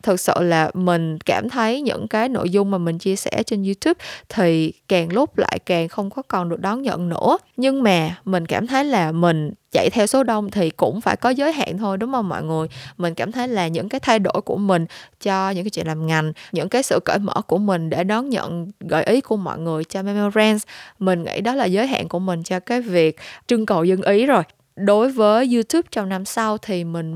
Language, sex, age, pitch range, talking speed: Vietnamese, female, 20-39, 175-235 Hz, 235 wpm